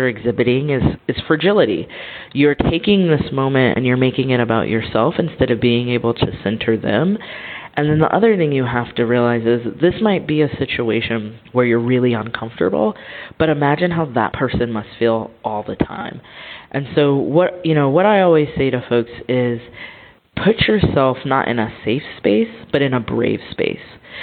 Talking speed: 180 wpm